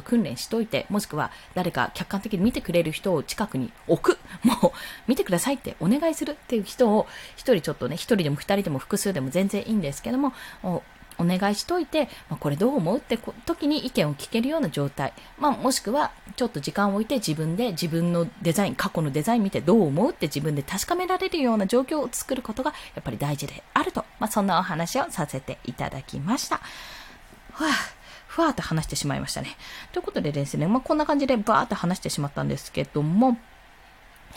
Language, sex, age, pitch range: Japanese, female, 20-39, 165-260 Hz